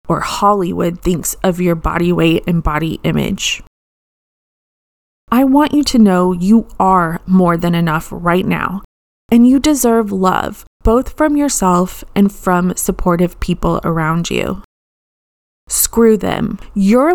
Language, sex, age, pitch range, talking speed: English, female, 20-39, 175-225 Hz, 135 wpm